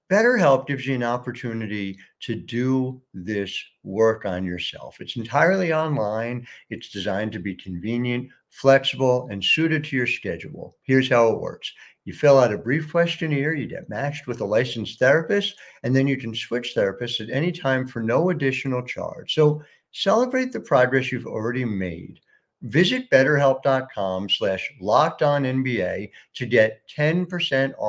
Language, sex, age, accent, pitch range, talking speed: English, male, 60-79, American, 115-170 Hz, 150 wpm